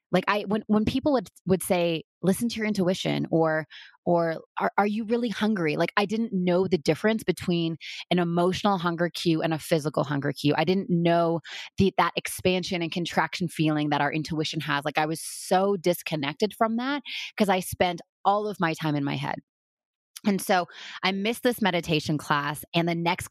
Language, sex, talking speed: English, female, 195 wpm